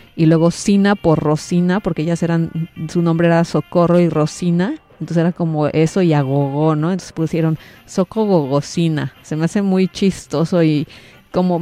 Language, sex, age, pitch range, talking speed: Italian, female, 30-49, 160-190 Hz, 160 wpm